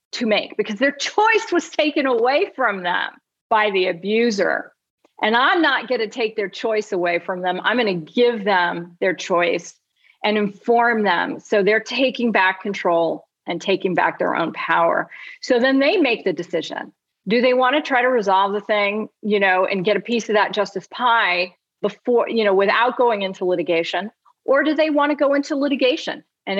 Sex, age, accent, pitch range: female, 40-59, American, 180-235 Hz